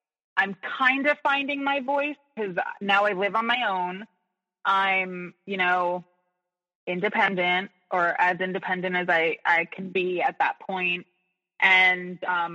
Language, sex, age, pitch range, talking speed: English, female, 20-39, 180-230 Hz, 145 wpm